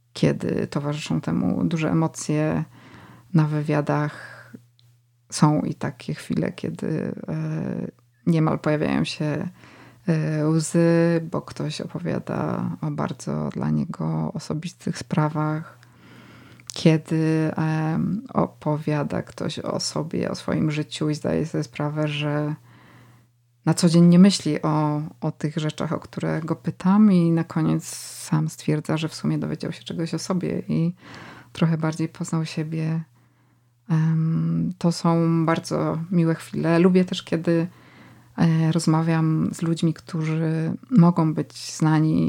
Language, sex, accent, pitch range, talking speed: Polish, female, native, 150-165 Hz, 120 wpm